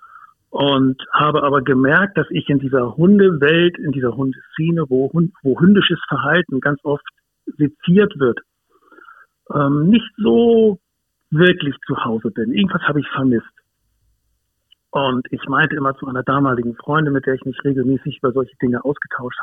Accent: German